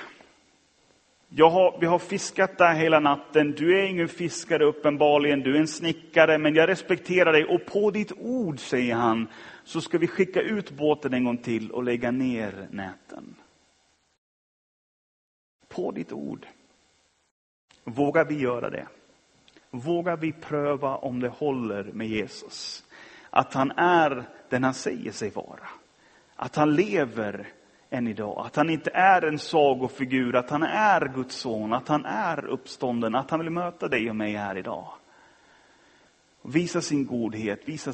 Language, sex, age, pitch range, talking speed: Swedish, male, 30-49, 120-170 Hz, 150 wpm